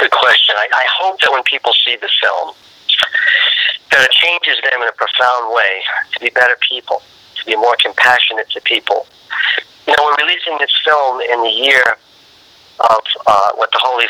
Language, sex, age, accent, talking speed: English, male, 40-59, American, 185 wpm